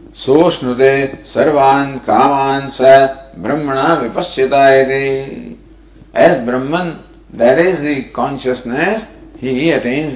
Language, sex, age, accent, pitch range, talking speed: English, male, 50-69, Indian, 135-185 Hz, 90 wpm